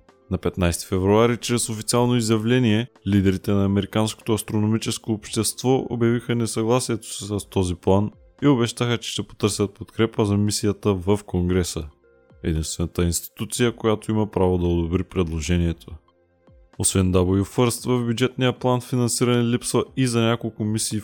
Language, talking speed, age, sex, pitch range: Bulgarian, 130 wpm, 20-39, male, 90-115 Hz